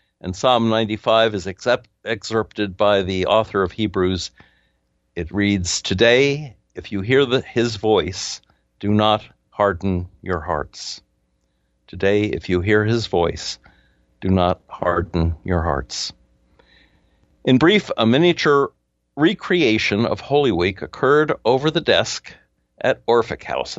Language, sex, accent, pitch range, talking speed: English, male, American, 85-115 Hz, 125 wpm